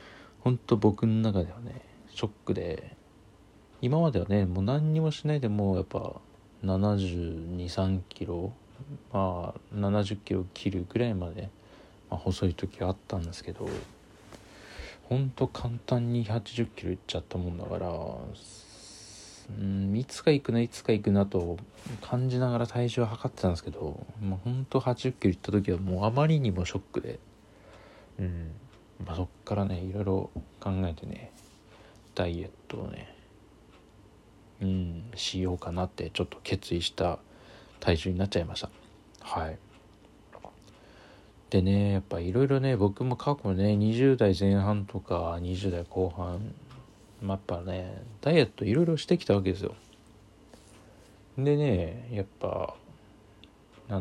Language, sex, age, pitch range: Japanese, male, 40-59, 95-115 Hz